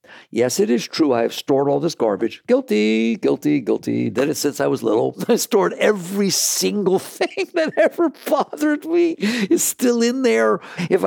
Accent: American